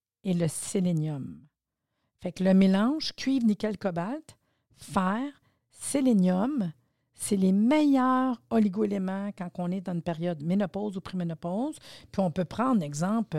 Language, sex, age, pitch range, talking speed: French, female, 50-69, 160-215 Hz, 135 wpm